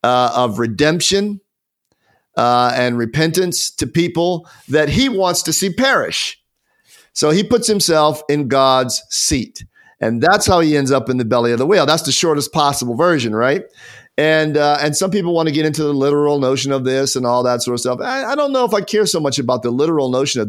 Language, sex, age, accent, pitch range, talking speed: English, male, 40-59, American, 135-180 Hz, 215 wpm